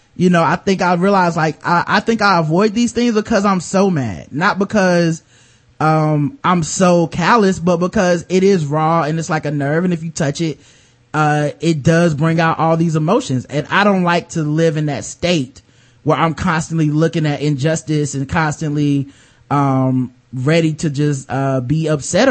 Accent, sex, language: American, male, English